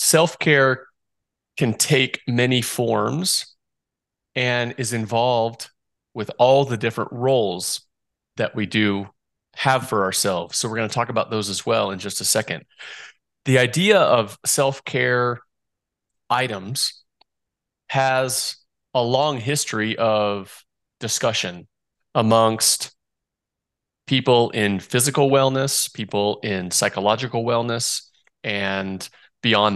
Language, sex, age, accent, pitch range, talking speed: English, male, 30-49, American, 105-125 Hz, 110 wpm